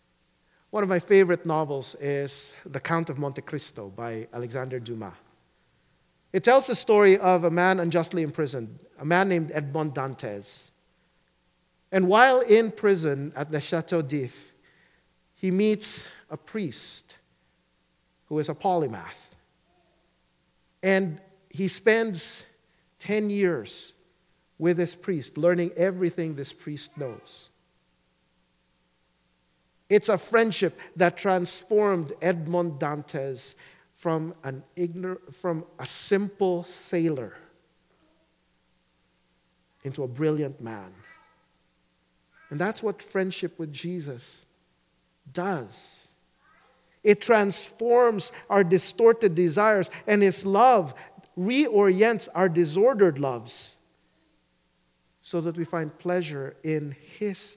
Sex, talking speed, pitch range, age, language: male, 105 wpm, 120-190 Hz, 50-69, English